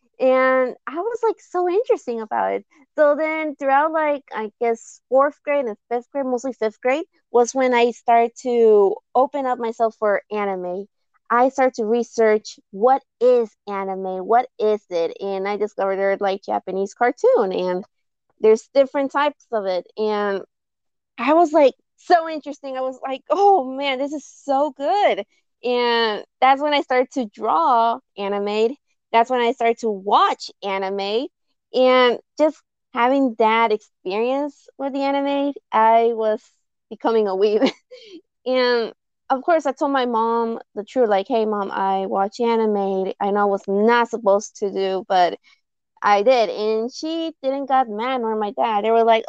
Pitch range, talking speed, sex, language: 210-275 Hz, 165 wpm, female, English